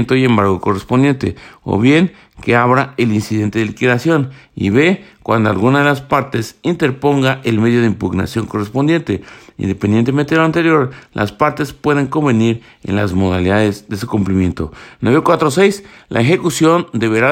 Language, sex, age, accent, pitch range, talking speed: Spanish, male, 50-69, Mexican, 105-140 Hz, 145 wpm